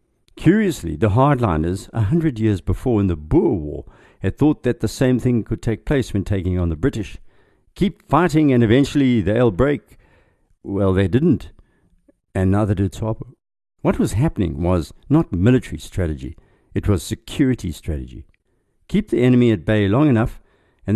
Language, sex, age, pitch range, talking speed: English, male, 60-79, 90-115 Hz, 165 wpm